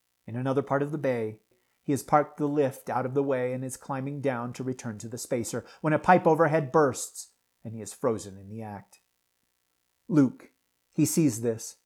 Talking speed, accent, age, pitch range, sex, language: 200 wpm, American, 40-59, 95-140 Hz, male, English